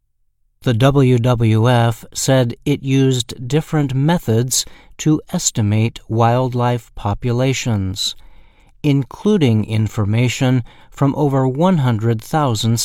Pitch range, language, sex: 110-135 Hz, Chinese, male